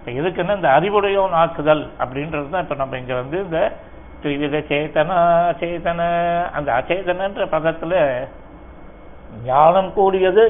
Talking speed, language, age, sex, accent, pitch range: 115 wpm, Tamil, 60-79, male, native, 160-195 Hz